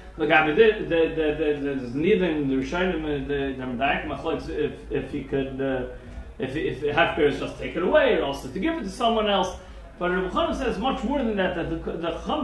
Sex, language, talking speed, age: male, English, 220 wpm, 40-59